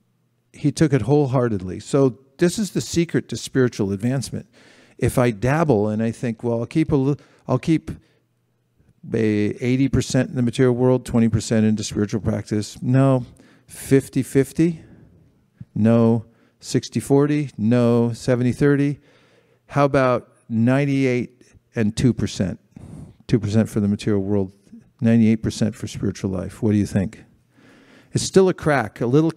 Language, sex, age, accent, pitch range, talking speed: English, male, 50-69, American, 110-135 Hz, 135 wpm